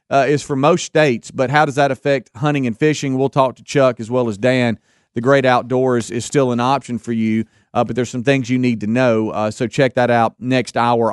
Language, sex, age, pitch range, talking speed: English, male, 40-59, 120-145 Hz, 250 wpm